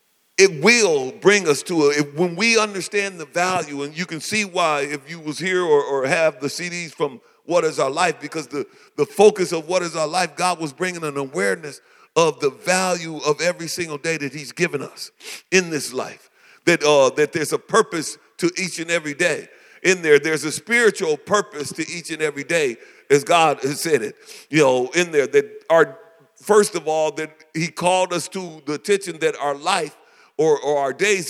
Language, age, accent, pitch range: English, 50-69, American, 165-210 Hz